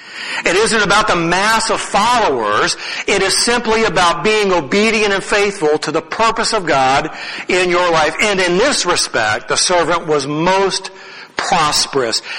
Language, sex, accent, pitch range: English, male, American, 170-215 Hz